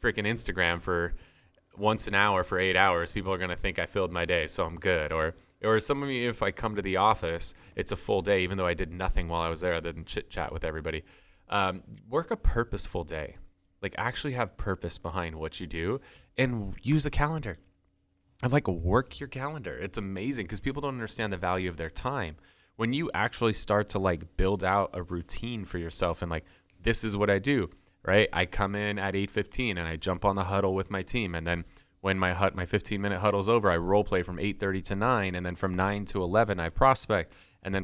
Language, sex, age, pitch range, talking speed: English, male, 20-39, 90-110 Hz, 230 wpm